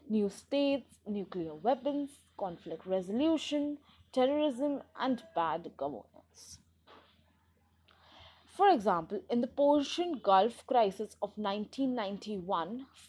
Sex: female